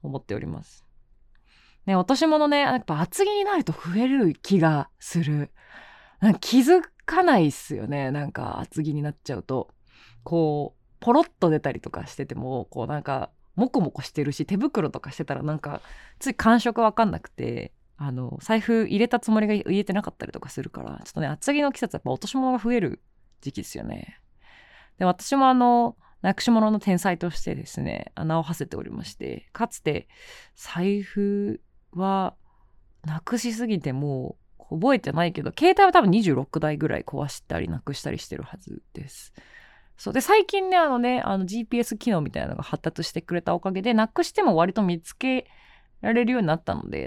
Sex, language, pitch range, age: female, Japanese, 150-240 Hz, 20-39